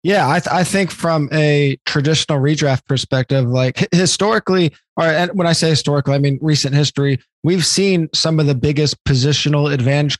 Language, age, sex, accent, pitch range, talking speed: English, 20-39, male, American, 140-160 Hz, 165 wpm